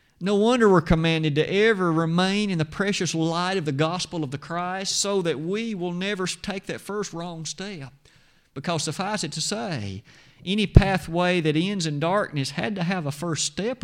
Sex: male